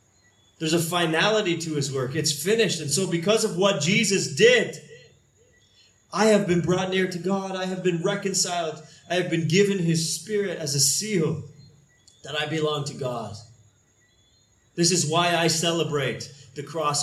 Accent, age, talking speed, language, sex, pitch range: American, 30-49, 165 wpm, English, male, 125-180 Hz